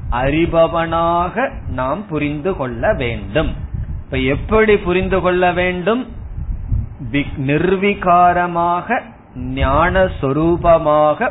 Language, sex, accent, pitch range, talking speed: Tamil, male, native, 120-170 Hz, 60 wpm